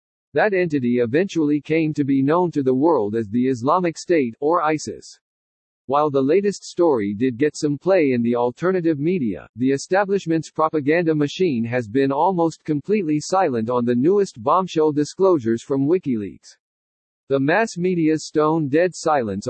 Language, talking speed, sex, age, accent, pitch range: English, 150 wpm, male, 50-69, American, 125-170 Hz